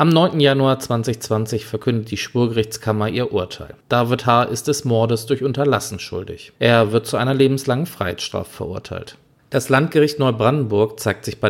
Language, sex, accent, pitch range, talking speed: German, male, German, 110-145 Hz, 155 wpm